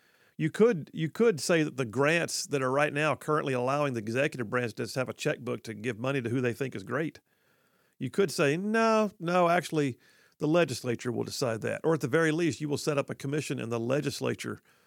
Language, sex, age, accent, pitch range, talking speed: English, male, 50-69, American, 125-170 Hz, 220 wpm